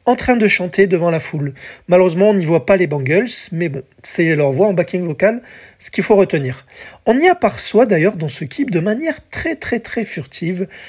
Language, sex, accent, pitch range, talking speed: French, male, French, 165-215 Hz, 215 wpm